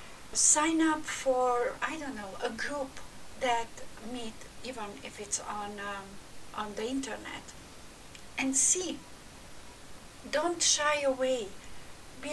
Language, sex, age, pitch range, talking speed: English, female, 60-79, 215-270 Hz, 115 wpm